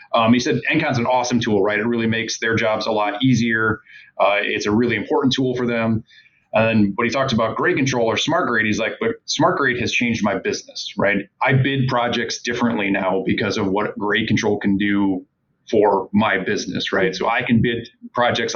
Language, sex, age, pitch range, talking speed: English, male, 30-49, 105-120 Hz, 215 wpm